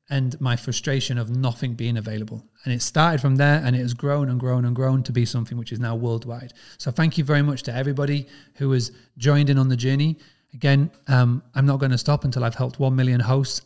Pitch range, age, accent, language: 125-145 Hz, 30-49, British, English